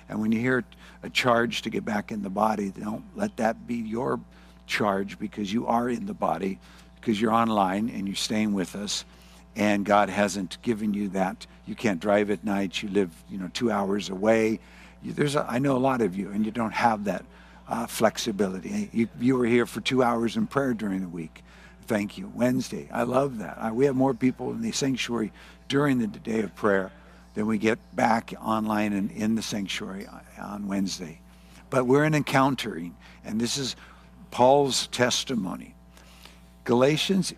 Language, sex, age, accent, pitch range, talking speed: English, male, 60-79, American, 90-130 Hz, 190 wpm